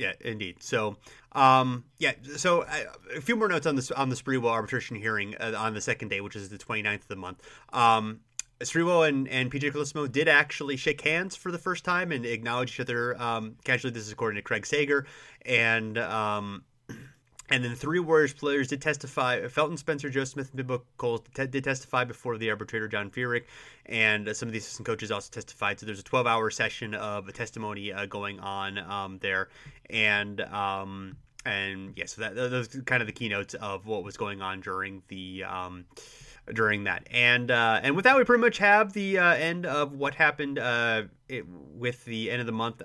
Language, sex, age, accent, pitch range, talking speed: English, male, 30-49, American, 110-140 Hz, 205 wpm